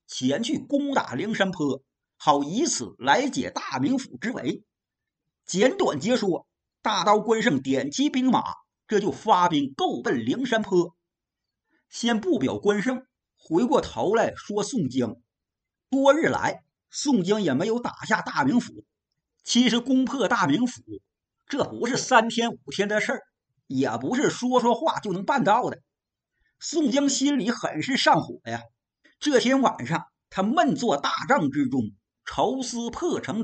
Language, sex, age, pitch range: Chinese, male, 50-69, 205-275 Hz